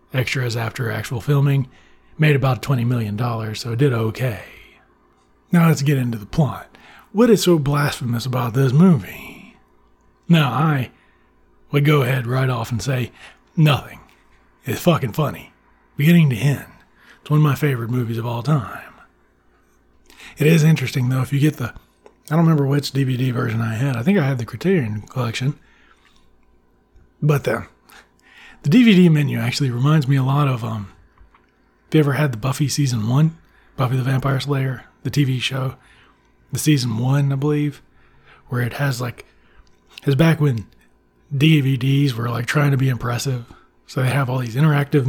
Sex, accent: male, American